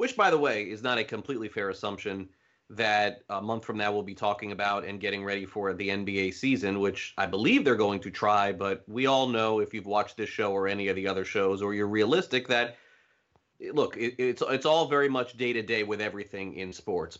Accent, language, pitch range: American, English, 100-125 Hz